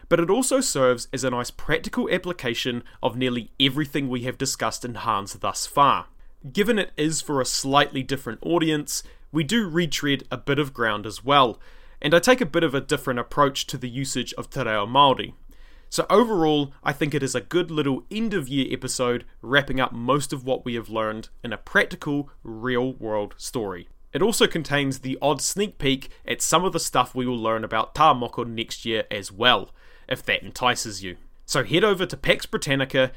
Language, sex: English, male